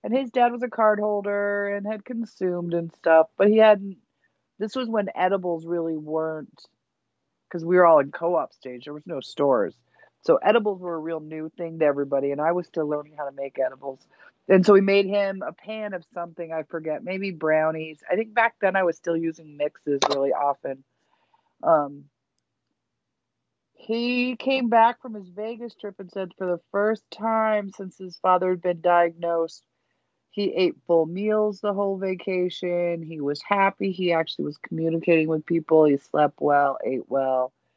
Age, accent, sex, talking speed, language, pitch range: 40-59, American, female, 185 wpm, English, 150-195 Hz